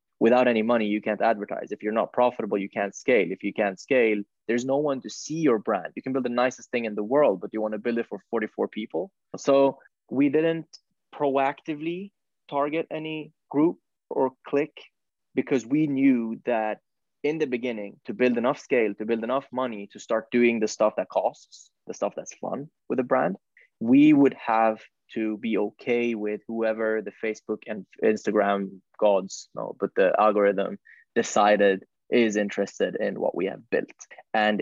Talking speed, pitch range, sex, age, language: 185 wpm, 105-125 Hz, male, 20-39, English